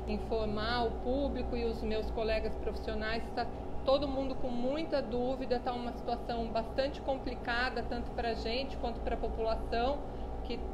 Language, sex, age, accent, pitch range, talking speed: Portuguese, female, 40-59, Brazilian, 230-275 Hz, 155 wpm